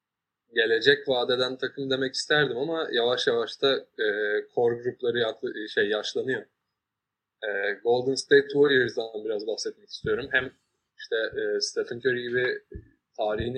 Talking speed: 130 wpm